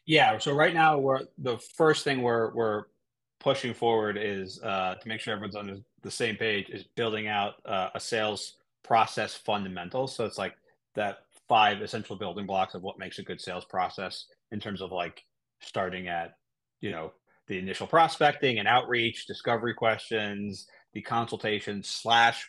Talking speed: 170 wpm